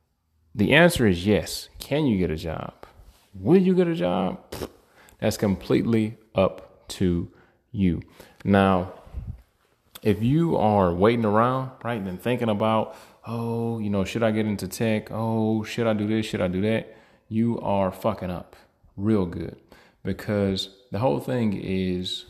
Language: English